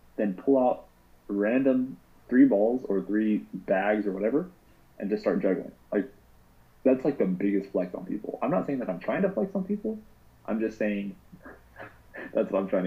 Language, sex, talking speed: English, male, 185 wpm